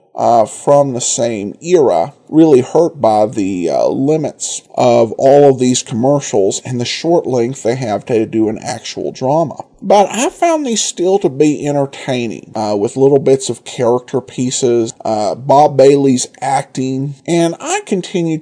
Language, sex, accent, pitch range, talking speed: English, male, American, 120-155 Hz, 160 wpm